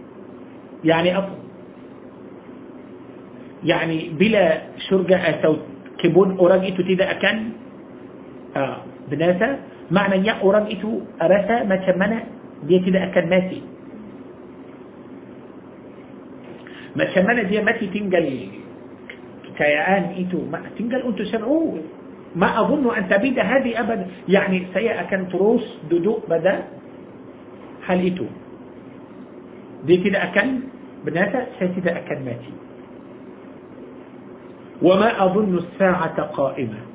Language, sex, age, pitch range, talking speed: Malay, male, 50-69, 180-225 Hz, 95 wpm